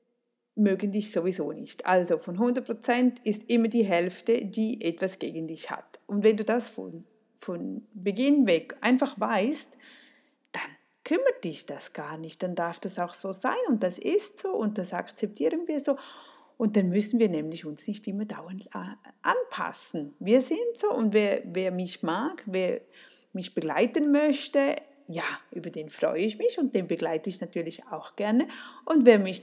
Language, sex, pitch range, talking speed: German, female, 180-255 Hz, 175 wpm